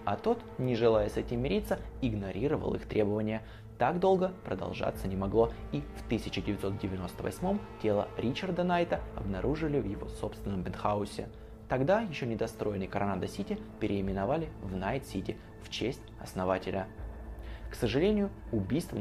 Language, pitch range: Russian, 105-130 Hz